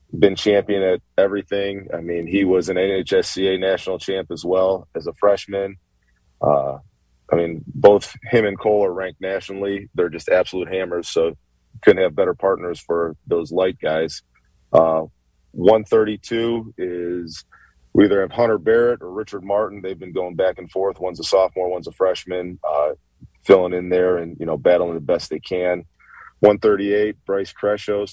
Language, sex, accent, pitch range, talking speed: English, male, American, 90-105 Hz, 170 wpm